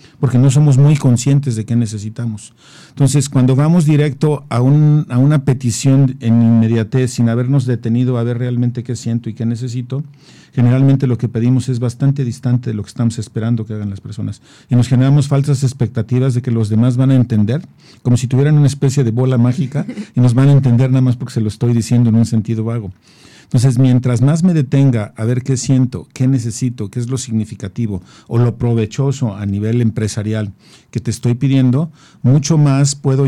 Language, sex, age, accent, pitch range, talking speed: Spanish, male, 50-69, Mexican, 115-135 Hz, 195 wpm